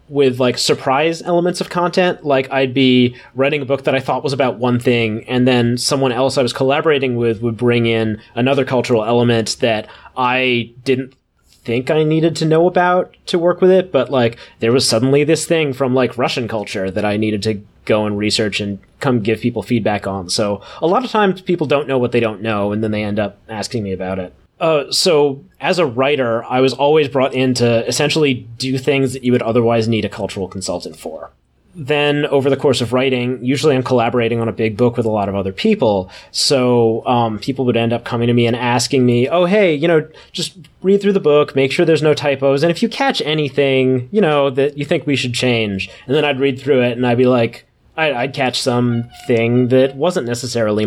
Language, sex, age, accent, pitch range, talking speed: English, male, 30-49, American, 115-145 Hz, 225 wpm